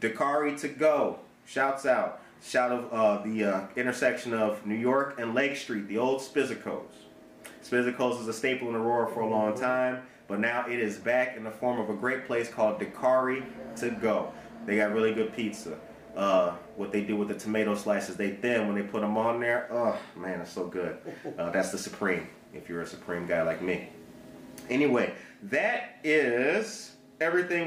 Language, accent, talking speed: English, American, 190 wpm